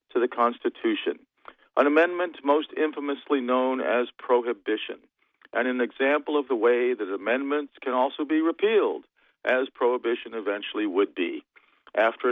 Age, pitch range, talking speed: 50-69, 120-155 Hz, 135 wpm